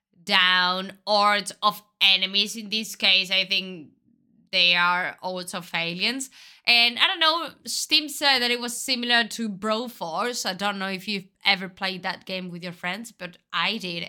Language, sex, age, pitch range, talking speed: Italian, female, 20-39, 180-235 Hz, 180 wpm